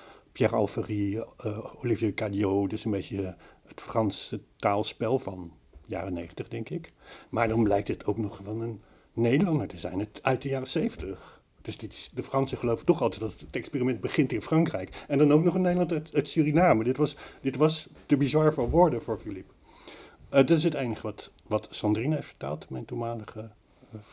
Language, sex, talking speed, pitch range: Dutch, male, 195 wpm, 110-135 Hz